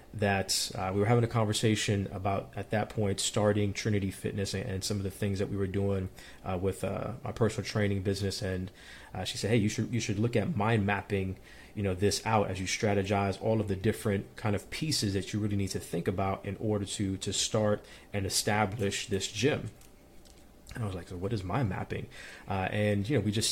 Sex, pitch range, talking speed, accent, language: male, 95-110 Hz, 225 wpm, American, English